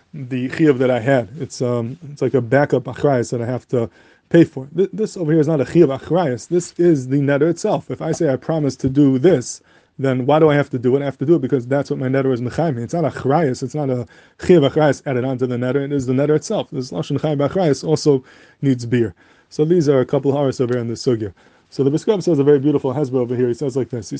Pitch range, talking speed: 130-155 Hz, 270 wpm